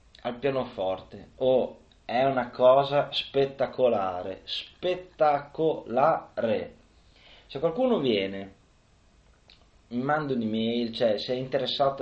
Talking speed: 95 wpm